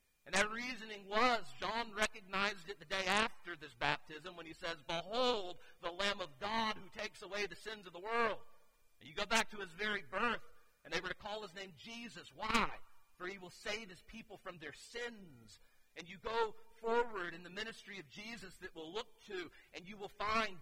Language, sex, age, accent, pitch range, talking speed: English, male, 50-69, American, 150-200 Hz, 205 wpm